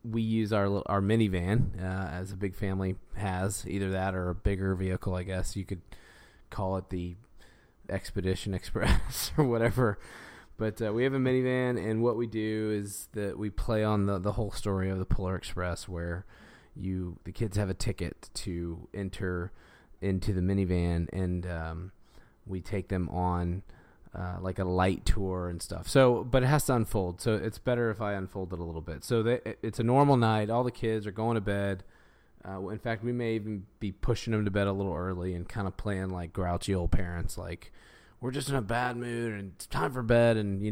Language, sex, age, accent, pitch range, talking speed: English, male, 20-39, American, 95-110 Hz, 210 wpm